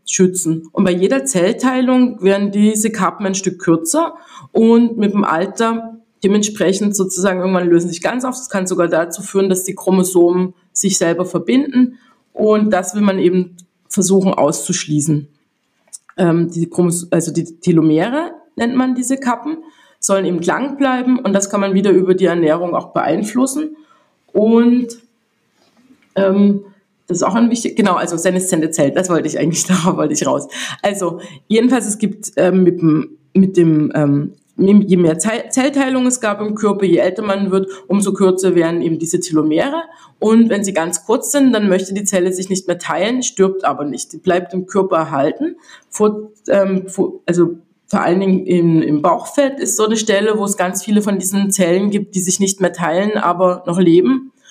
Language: German